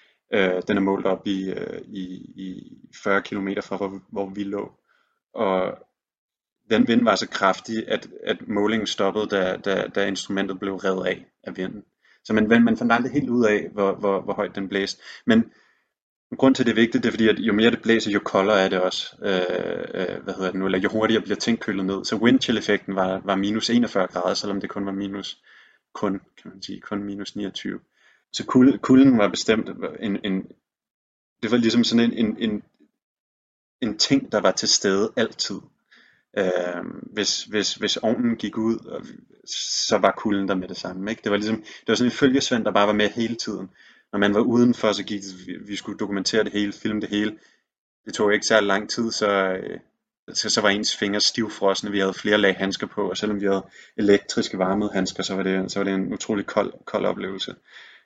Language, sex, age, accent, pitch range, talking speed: Danish, male, 30-49, native, 95-110 Hz, 210 wpm